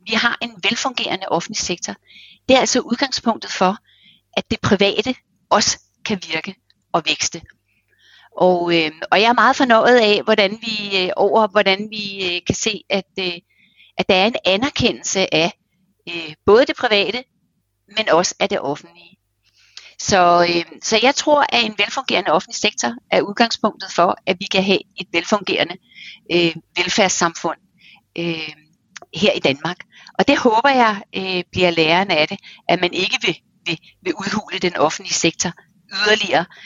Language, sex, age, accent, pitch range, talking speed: Danish, female, 30-49, native, 175-215 Hz, 155 wpm